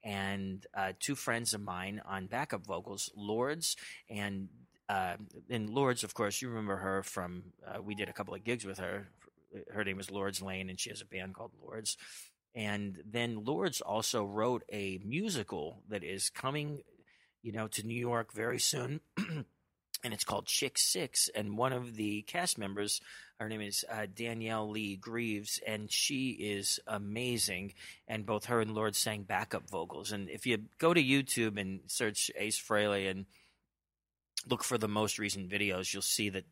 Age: 30-49